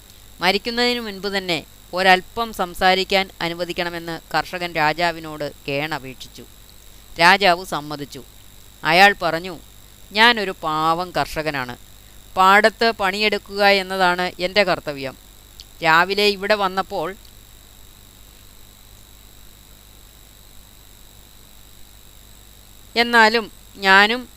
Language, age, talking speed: Malayalam, 20-39, 65 wpm